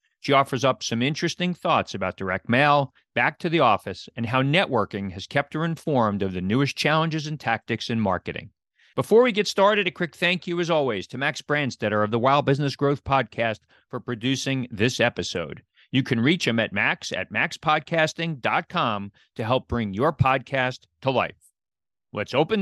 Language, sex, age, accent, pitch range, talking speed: English, male, 40-59, American, 120-160 Hz, 180 wpm